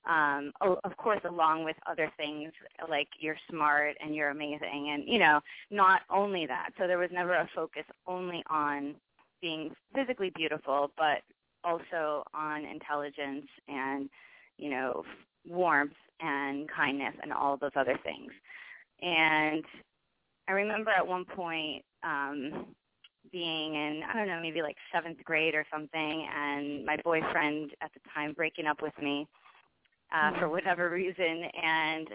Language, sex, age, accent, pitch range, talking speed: English, female, 20-39, American, 150-175 Hz, 145 wpm